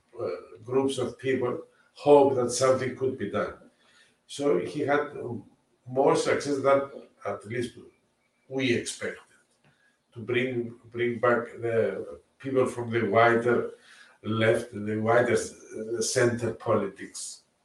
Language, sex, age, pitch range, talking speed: Turkish, male, 50-69, 115-145 Hz, 110 wpm